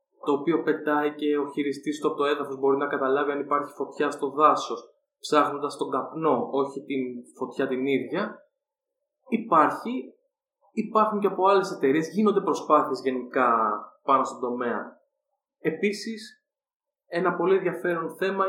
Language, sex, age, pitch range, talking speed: Greek, male, 20-39, 140-190 Hz, 140 wpm